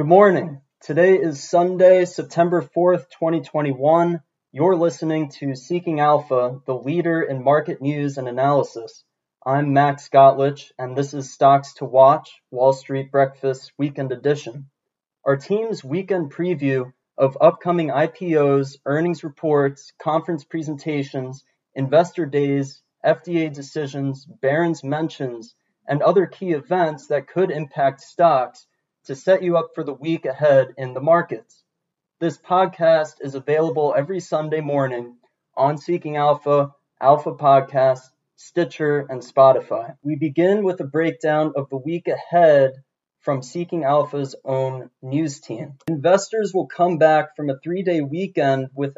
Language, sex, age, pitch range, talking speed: English, male, 20-39, 135-170 Hz, 135 wpm